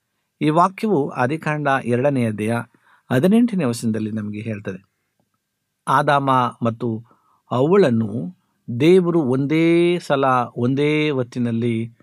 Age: 60-79